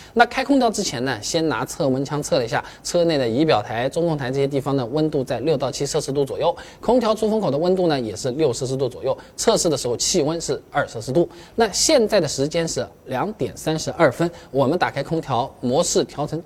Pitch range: 130-185 Hz